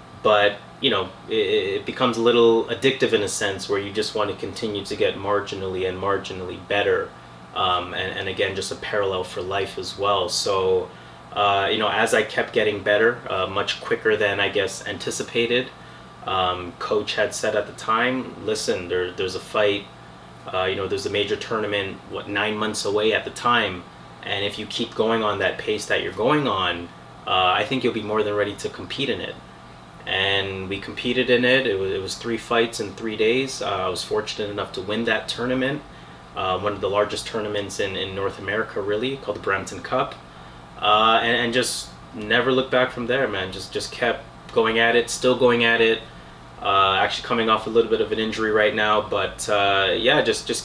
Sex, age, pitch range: male, 20-39, 95-125 Hz